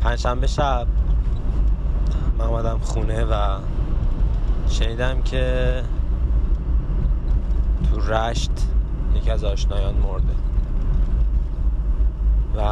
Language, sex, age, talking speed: Persian, male, 20-39, 70 wpm